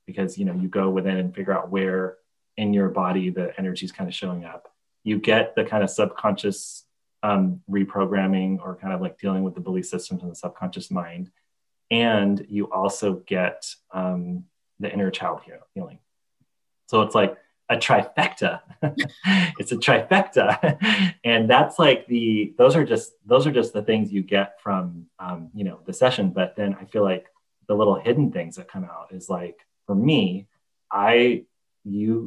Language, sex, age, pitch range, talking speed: English, male, 30-49, 95-105 Hz, 180 wpm